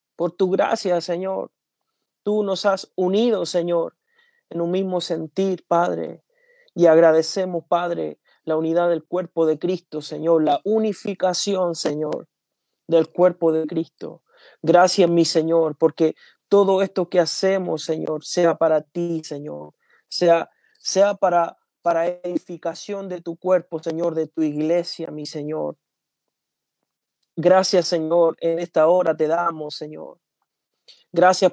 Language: Spanish